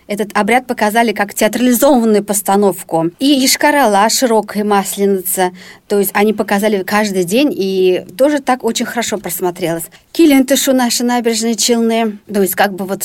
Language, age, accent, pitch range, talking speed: Russian, 40-59, native, 205-250 Hz, 145 wpm